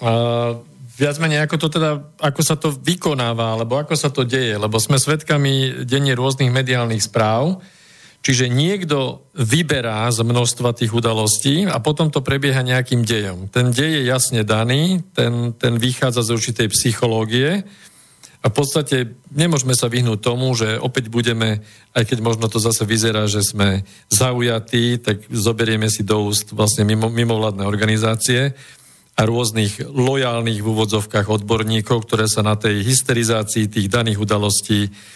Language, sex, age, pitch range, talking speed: Slovak, male, 50-69, 110-135 Hz, 145 wpm